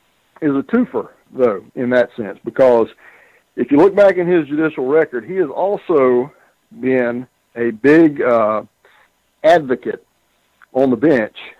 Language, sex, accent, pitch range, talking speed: English, male, American, 115-135 Hz, 140 wpm